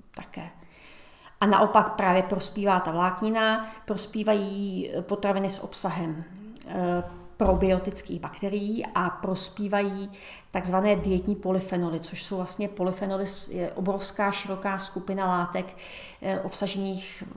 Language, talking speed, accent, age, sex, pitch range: Czech, 95 wpm, native, 40-59, female, 175-195 Hz